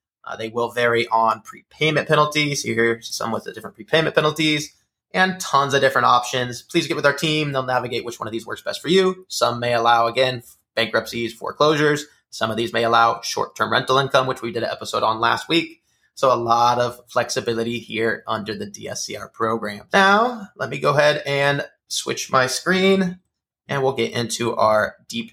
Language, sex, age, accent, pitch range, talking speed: English, male, 20-39, American, 125-165 Hz, 195 wpm